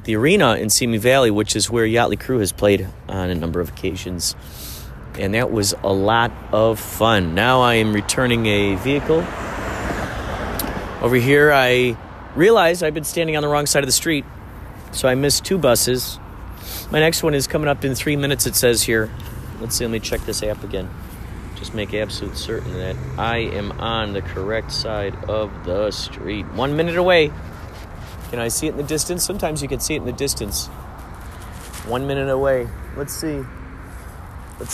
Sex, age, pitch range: male, 40-59, 95-130 Hz